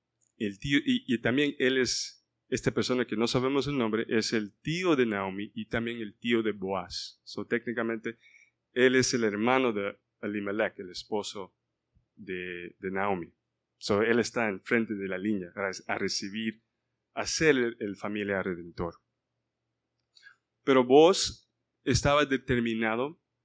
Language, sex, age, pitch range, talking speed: Spanish, male, 30-49, 110-135 Hz, 145 wpm